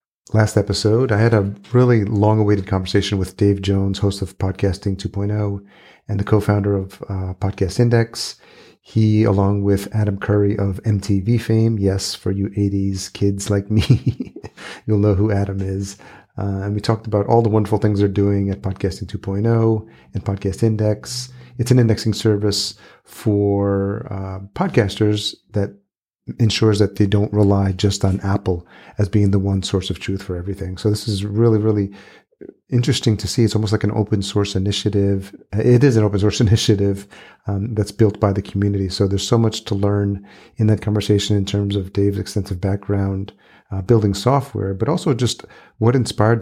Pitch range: 100-110 Hz